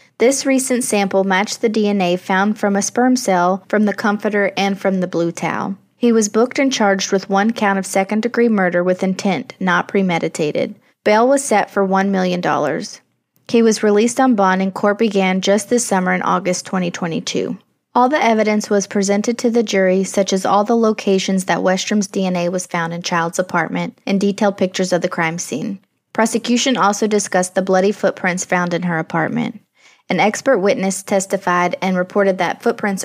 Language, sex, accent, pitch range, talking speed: English, female, American, 180-210 Hz, 180 wpm